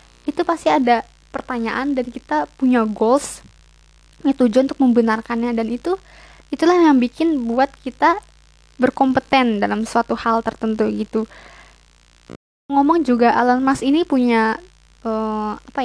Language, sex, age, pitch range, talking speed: Indonesian, female, 20-39, 235-285 Hz, 125 wpm